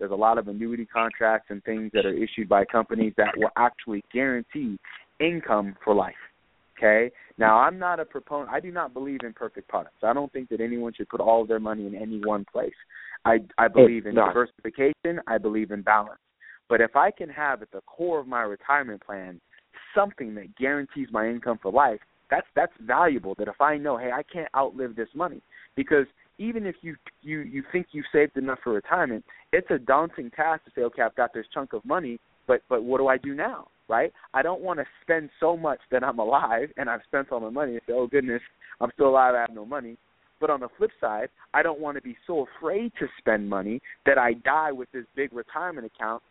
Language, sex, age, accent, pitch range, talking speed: English, male, 30-49, American, 110-145 Hz, 225 wpm